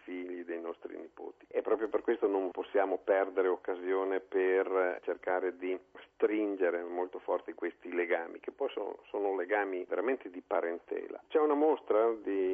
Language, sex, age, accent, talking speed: Italian, male, 50-69, native, 155 wpm